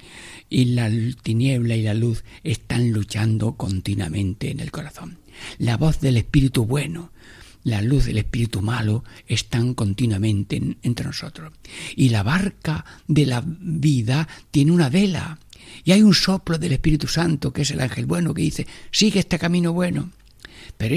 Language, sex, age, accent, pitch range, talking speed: Spanish, male, 60-79, Spanish, 110-165 Hz, 155 wpm